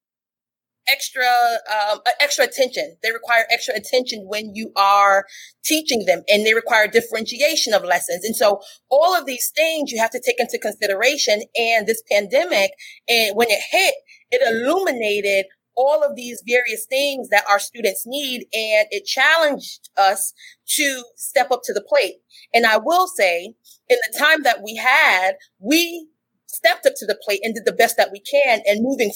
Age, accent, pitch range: 30-49, American, 215-290 Hz